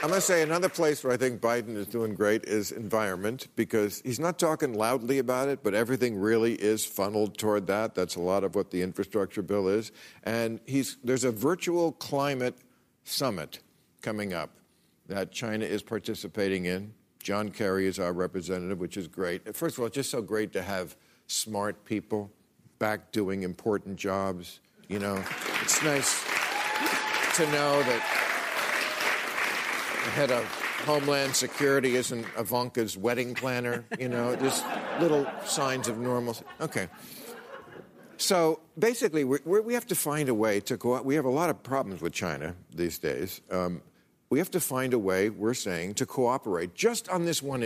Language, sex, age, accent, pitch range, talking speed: English, male, 50-69, American, 105-135 Hz, 170 wpm